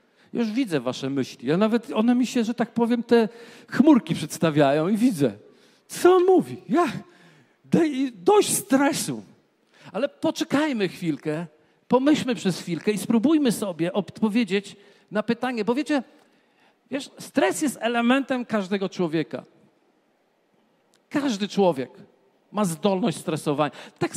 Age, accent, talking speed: 50-69, native, 120 wpm